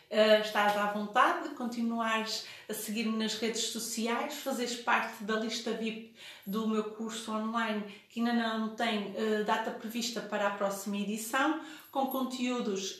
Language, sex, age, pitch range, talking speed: Portuguese, female, 30-49, 210-230 Hz, 150 wpm